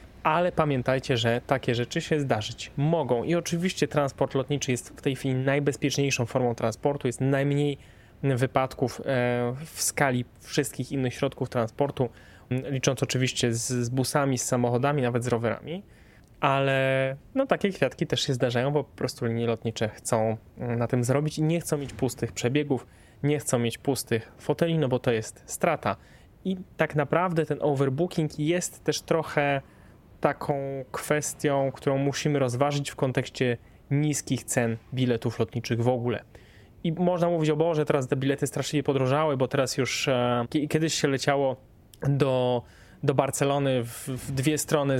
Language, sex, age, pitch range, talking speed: Polish, male, 20-39, 120-145 Hz, 150 wpm